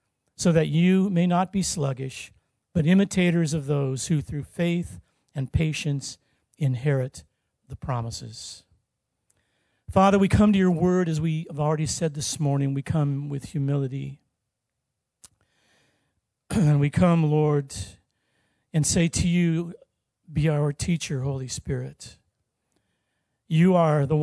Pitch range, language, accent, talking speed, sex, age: 135-165 Hz, English, American, 130 wpm, male, 50-69